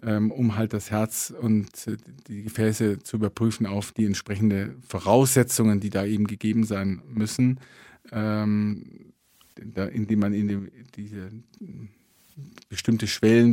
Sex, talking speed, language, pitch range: male, 125 wpm, German, 105-120 Hz